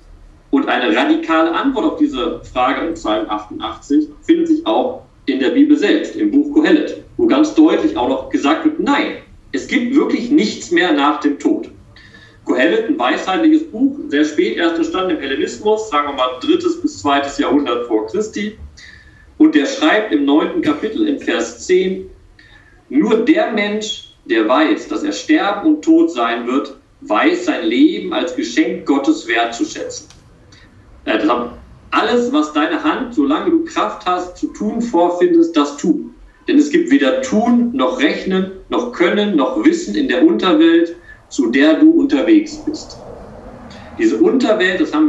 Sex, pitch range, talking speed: male, 220-325 Hz, 160 wpm